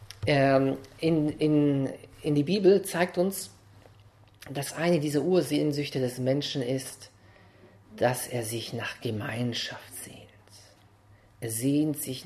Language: English